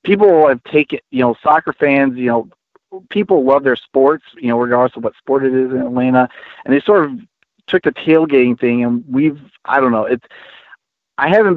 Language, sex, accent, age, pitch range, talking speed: English, male, American, 40-59, 125-155 Hz, 200 wpm